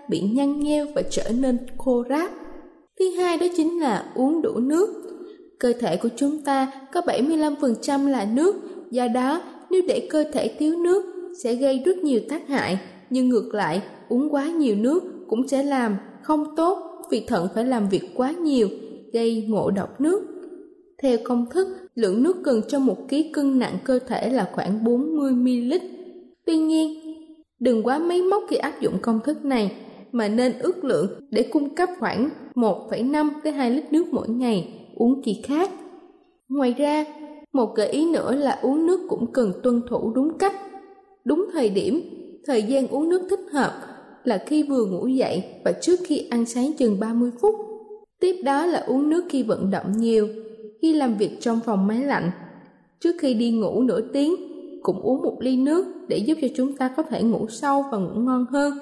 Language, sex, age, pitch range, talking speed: Vietnamese, female, 20-39, 235-330 Hz, 190 wpm